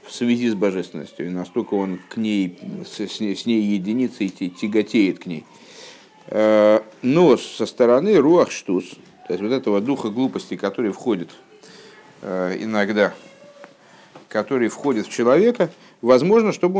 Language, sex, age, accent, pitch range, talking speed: Russian, male, 50-69, native, 105-165 Hz, 125 wpm